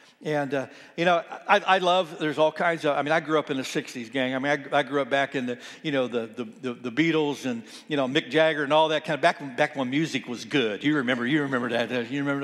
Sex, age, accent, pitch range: male, 60-79, American, 135-160 Hz